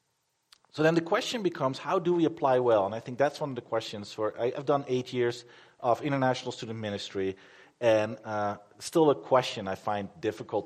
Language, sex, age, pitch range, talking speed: English, male, 40-59, 110-160 Hz, 205 wpm